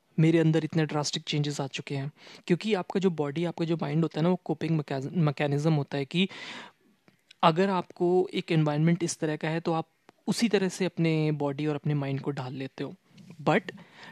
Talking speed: 200 wpm